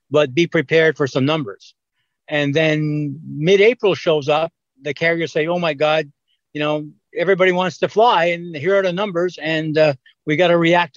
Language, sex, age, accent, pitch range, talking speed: English, male, 60-79, American, 140-165 Hz, 185 wpm